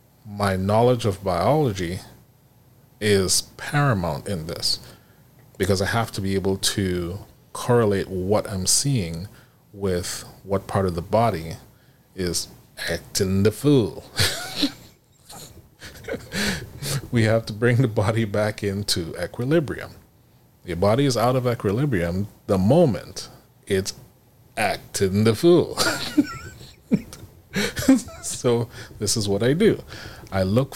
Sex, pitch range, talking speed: male, 95-125 Hz, 115 wpm